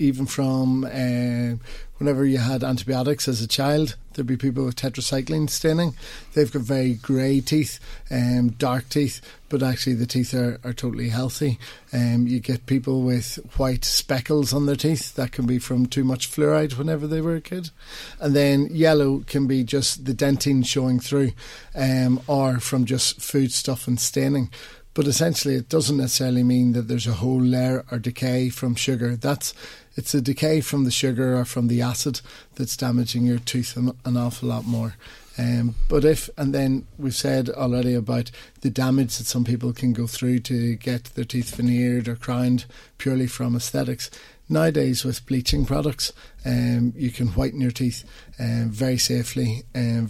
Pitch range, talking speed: 120-135 Hz, 175 wpm